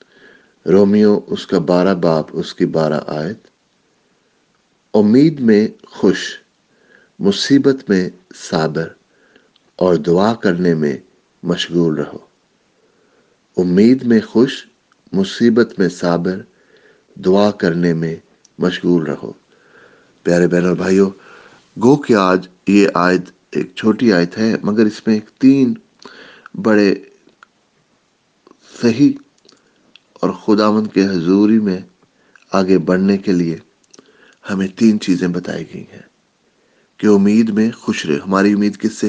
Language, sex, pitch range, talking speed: English, male, 90-110 Hz, 110 wpm